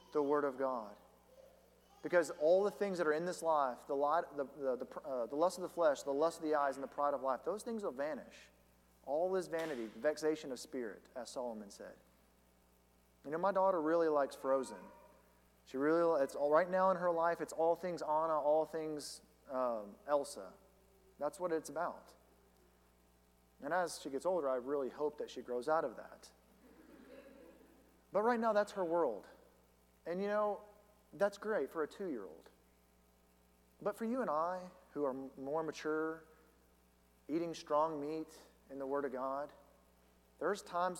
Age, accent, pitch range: 40-59, American, 125-180 Hz